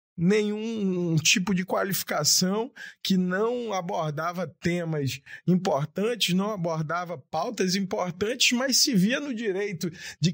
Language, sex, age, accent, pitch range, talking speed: Portuguese, male, 20-39, Brazilian, 155-195 Hz, 110 wpm